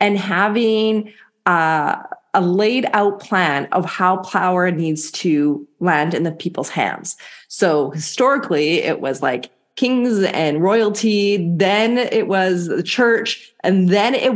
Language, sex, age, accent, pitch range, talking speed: English, female, 30-49, American, 165-215 Hz, 140 wpm